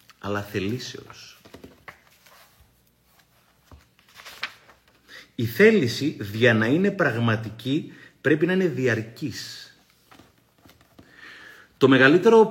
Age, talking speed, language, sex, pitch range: 30-49, 65 wpm, Greek, male, 125-170 Hz